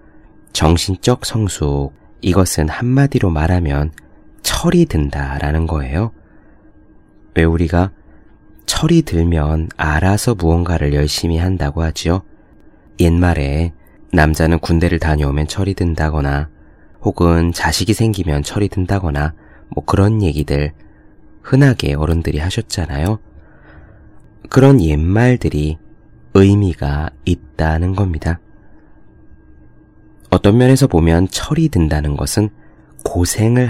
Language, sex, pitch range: Korean, male, 75-105 Hz